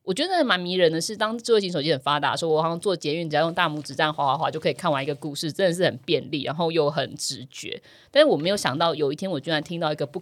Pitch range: 150-230 Hz